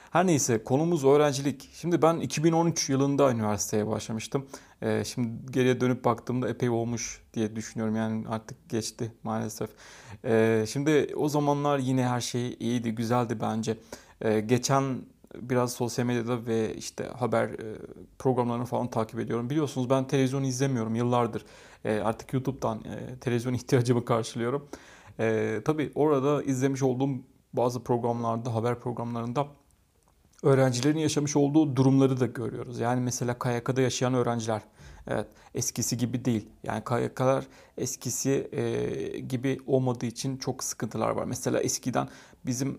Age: 30-49